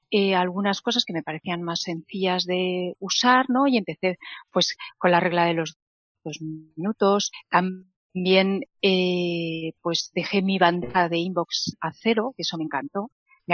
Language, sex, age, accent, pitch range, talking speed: Spanish, female, 40-59, Spanish, 175-215 Hz, 160 wpm